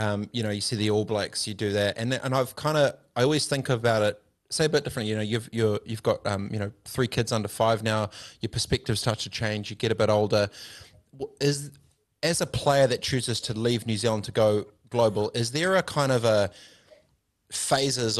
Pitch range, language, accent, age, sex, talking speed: 105-130 Hz, English, Australian, 20-39, male, 230 wpm